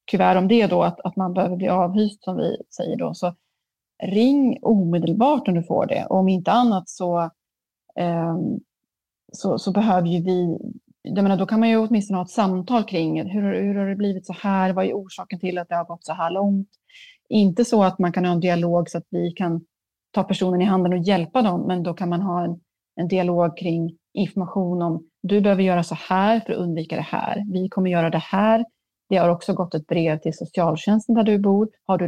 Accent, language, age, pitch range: native, Swedish, 30-49, 175-215 Hz